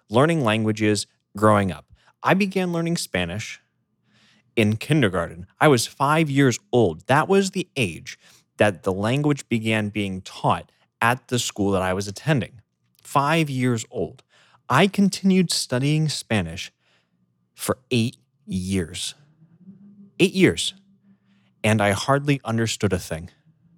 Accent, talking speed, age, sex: American, 125 wpm, 30-49, male